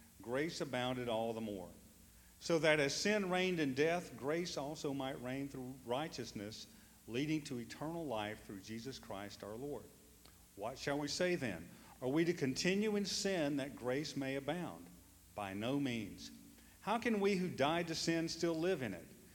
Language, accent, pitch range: English, American, 105-145 Hz